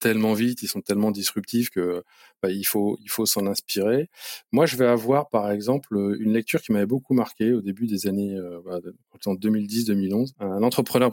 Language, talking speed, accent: French, 190 wpm, French